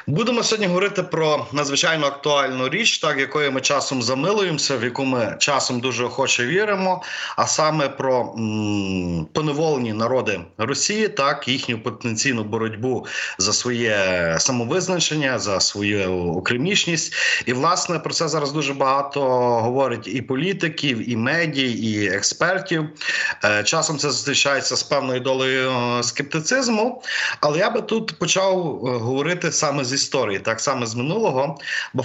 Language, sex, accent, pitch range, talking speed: Ukrainian, male, native, 120-165 Hz, 135 wpm